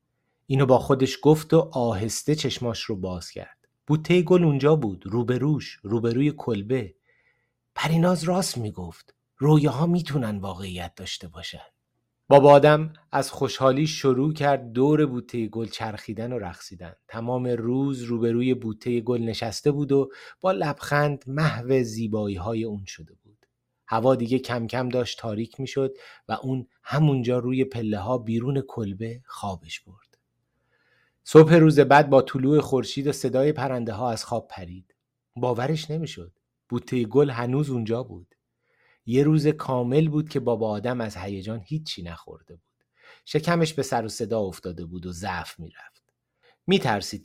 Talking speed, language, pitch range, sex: 145 wpm, Persian, 110-140 Hz, male